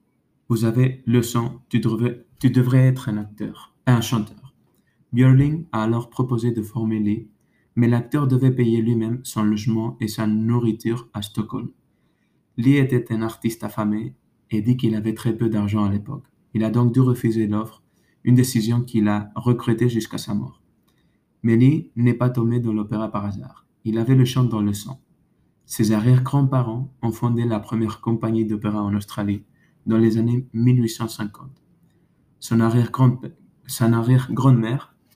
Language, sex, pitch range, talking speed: French, male, 110-125 Hz, 155 wpm